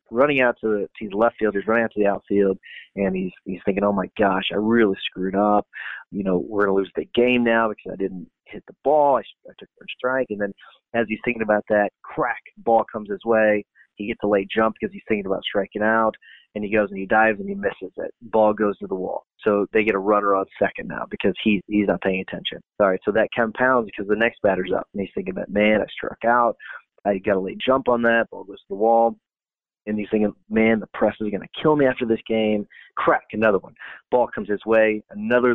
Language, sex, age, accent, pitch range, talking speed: English, male, 30-49, American, 100-115 Hz, 250 wpm